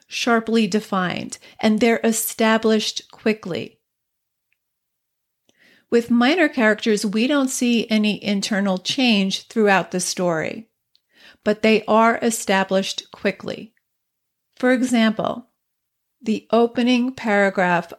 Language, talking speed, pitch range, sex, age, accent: English, 95 wpm, 200-245 Hz, female, 40-59, American